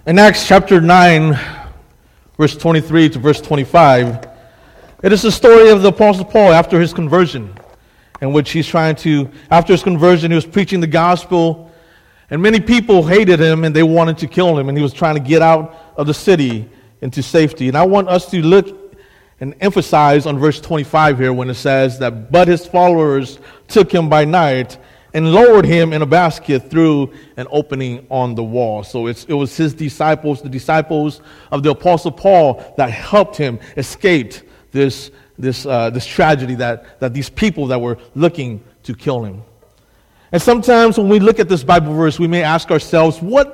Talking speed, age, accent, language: 185 wpm, 40-59, American, English